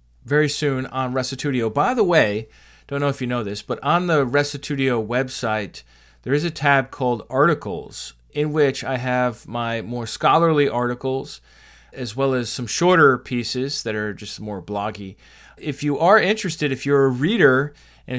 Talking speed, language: 170 wpm, English